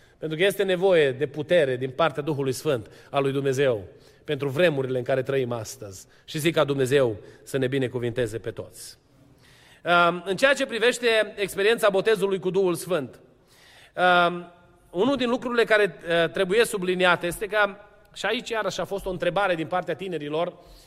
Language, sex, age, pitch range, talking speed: Romanian, male, 30-49, 150-220 Hz, 160 wpm